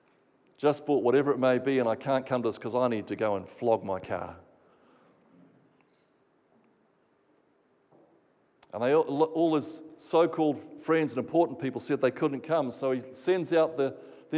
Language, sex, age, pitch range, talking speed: English, male, 50-69, 130-160 Hz, 165 wpm